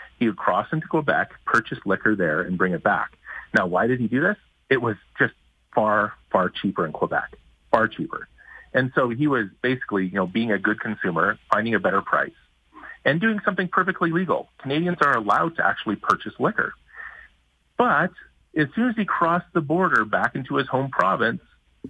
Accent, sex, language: American, male, English